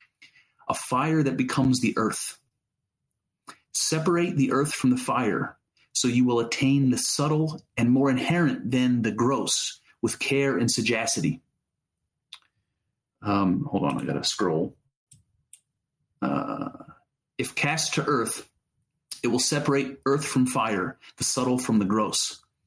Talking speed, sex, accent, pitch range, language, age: 130 wpm, male, American, 115-140 Hz, English, 30-49